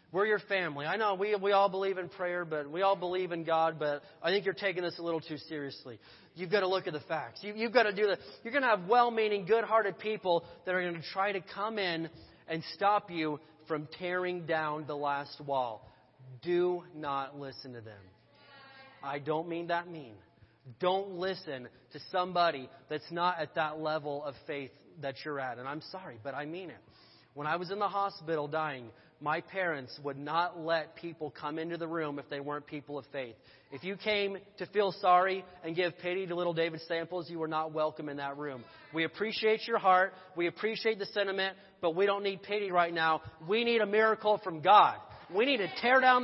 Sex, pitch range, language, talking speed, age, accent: male, 155-215 Hz, English, 215 wpm, 30-49, American